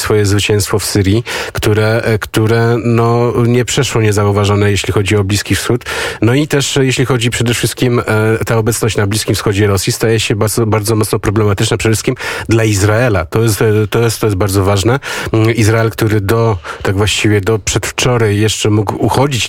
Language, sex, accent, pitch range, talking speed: Polish, male, native, 105-115 Hz, 170 wpm